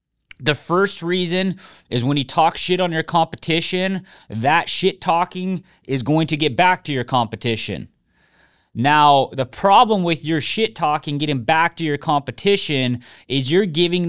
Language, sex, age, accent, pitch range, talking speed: English, male, 30-49, American, 140-180 Hz, 160 wpm